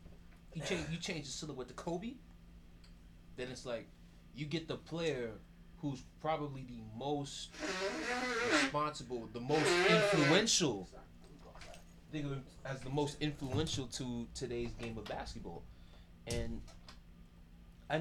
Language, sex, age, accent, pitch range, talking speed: English, male, 20-39, American, 85-140 Hz, 125 wpm